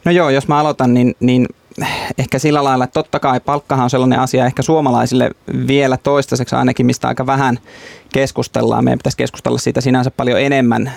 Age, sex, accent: 20-39, male, native